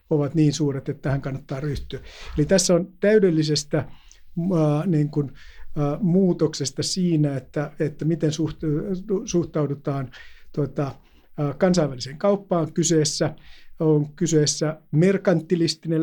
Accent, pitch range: native, 150-170 Hz